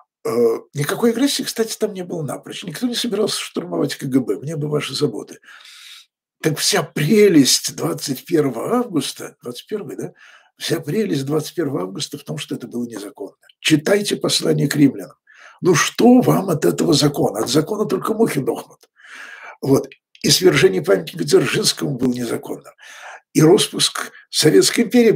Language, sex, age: Russian, male, 60-79